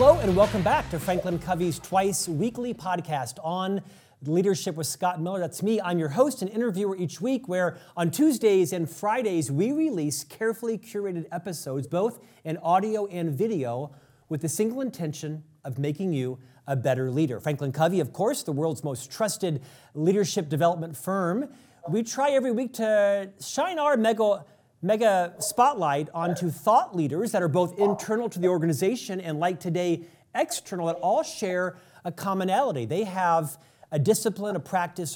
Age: 40-59